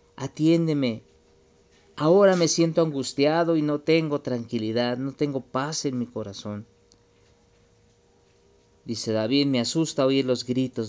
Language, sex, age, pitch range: Spanish, male, 40-59, 95-135 Hz